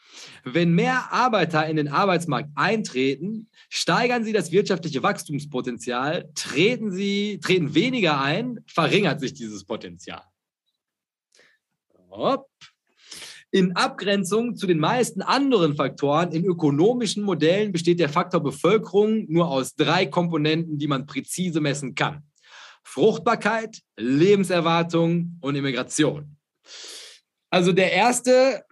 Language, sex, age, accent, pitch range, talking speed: German, male, 30-49, German, 150-200 Hz, 105 wpm